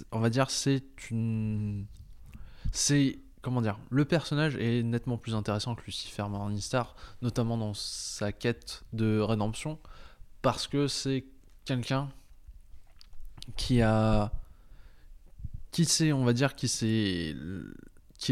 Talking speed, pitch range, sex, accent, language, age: 120 wpm, 105-125 Hz, male, French, French, 20-39